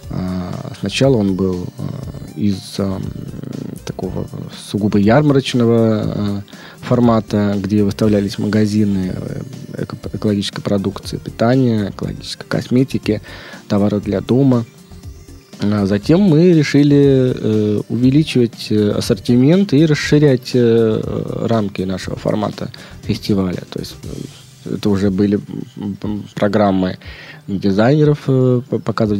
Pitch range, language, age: 100-125 Hz, Russian, 20-39